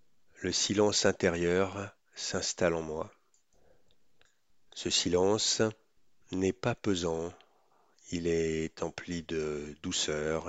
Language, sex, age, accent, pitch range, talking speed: French, male, 50-69, French, 85-105 Hz, 90 wpm